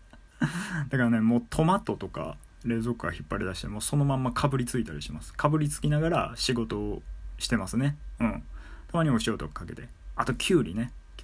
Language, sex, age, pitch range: Japanese, male, 20-39, 95-140 Hz